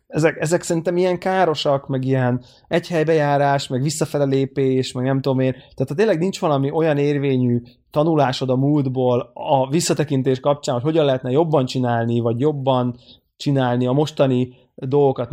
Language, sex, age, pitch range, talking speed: Hungarian, male, 20-39, 120-140 Hz, 150 wpm